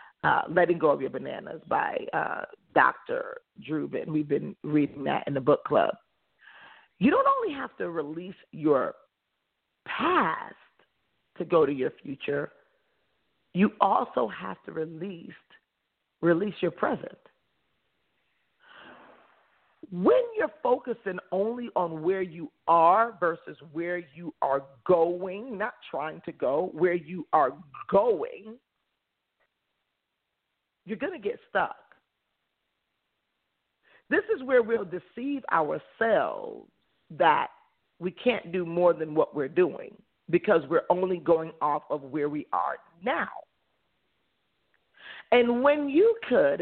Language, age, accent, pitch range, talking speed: English, 40-59, American, 170-270 Hz, 120 wpm